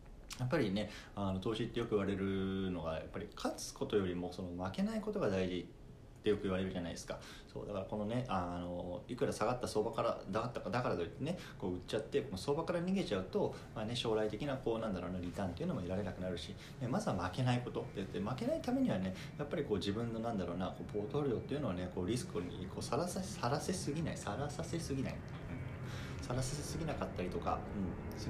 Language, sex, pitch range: Japanese, male, 95-125 Hz